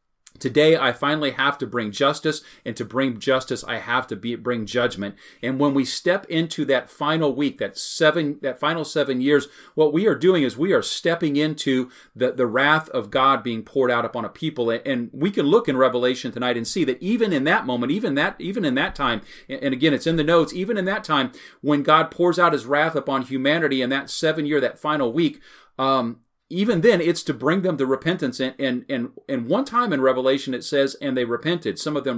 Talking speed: 225 wpm